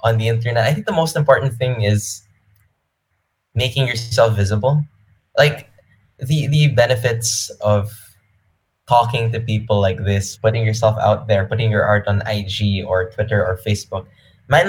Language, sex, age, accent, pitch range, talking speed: English, male, 10-29, Filipino, 95-115 Hz, 150 wpm